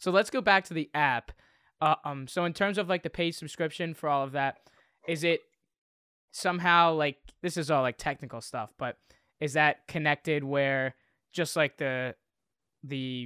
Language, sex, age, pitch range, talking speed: English, male, 10-29, 125-150 Hz, 180 wpm